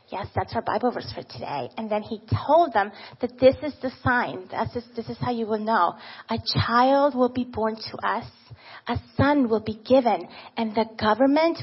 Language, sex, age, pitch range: English, female, 30-49, 220-255 Hz